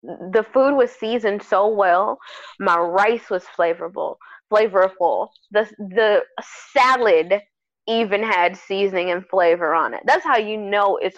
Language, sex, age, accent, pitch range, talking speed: English, female, 20-39, American, 180-220 Hz, 140 wpm